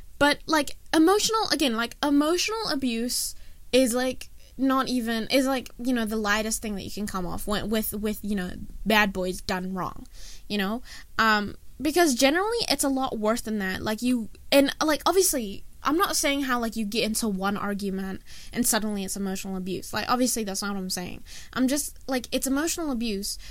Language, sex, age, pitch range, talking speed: English, female, 10-29, 200-280 Hz, 190 wpm